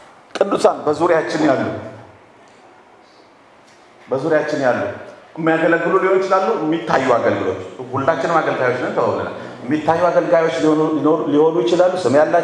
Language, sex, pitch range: English, male, 135-215 Hz